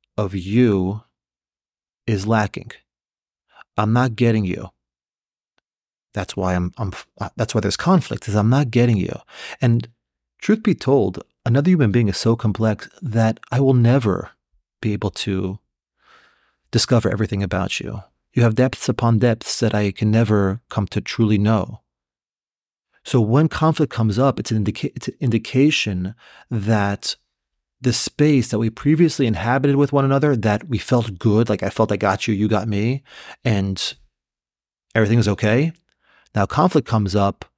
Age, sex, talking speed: 30-49, male, 150 wpm